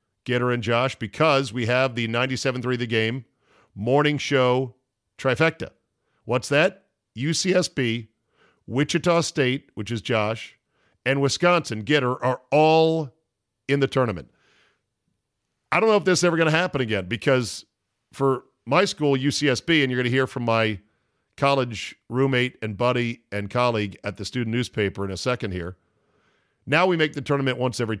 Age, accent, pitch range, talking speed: 50-69, American, 110-140 Hz, 155 wpm